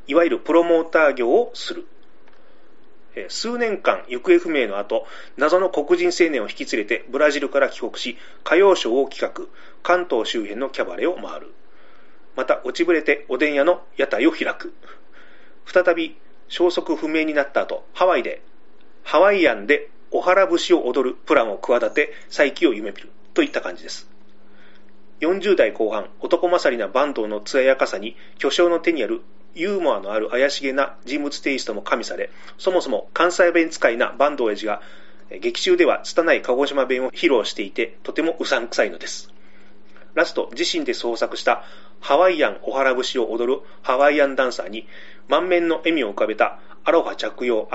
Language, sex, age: Japanese, male, 30-49